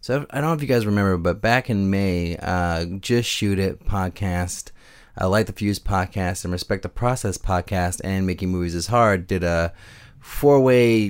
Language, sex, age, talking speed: English, male, 30-49, 190 wpm